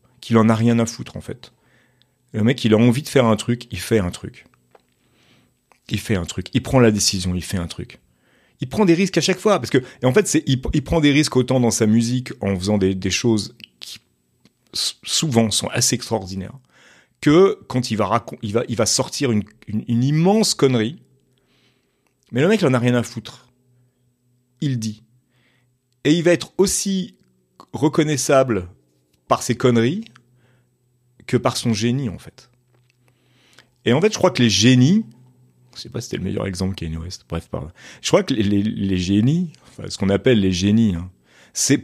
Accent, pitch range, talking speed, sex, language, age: French, 110-130 Hz, 200 wpm, male, French, 30-49